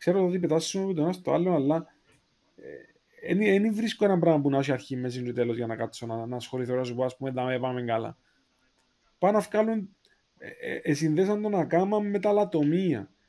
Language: Greek